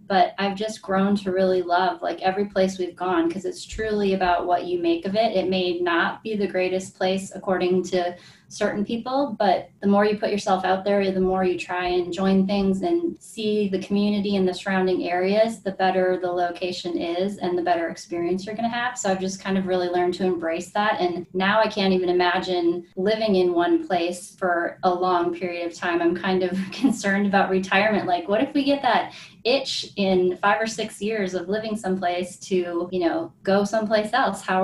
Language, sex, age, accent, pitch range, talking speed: English, female, 20-39, American, 180-200 Hz, 210 wpm